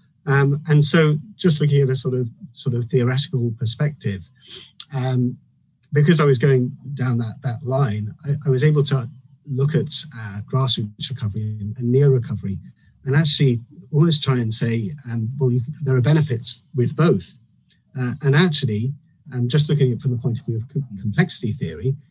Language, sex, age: English, male, 40-59